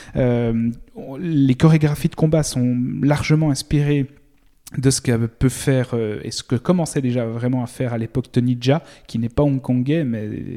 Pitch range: 120-145 Hz